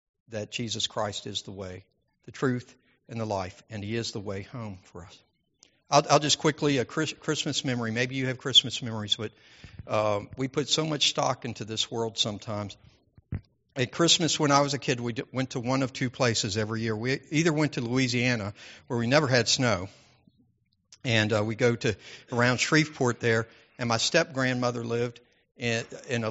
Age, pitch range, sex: 60-79, 105-130 Hz, male